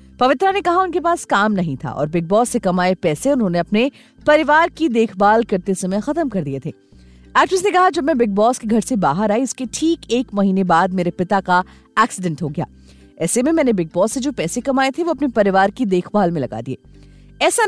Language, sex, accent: Hindi, female, native